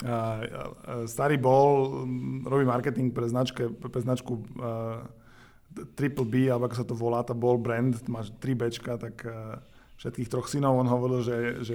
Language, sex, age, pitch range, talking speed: Slovak, male, 20-39, 120-125 Hz, 145 wpm